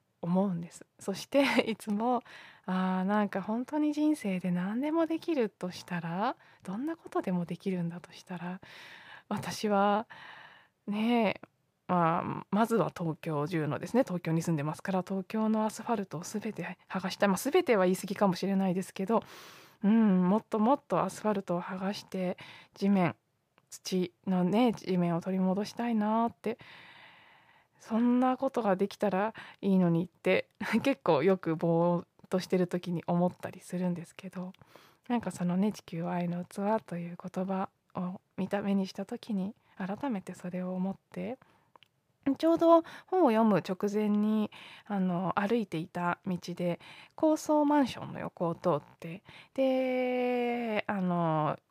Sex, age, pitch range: female, 20-39, 180-220 Hz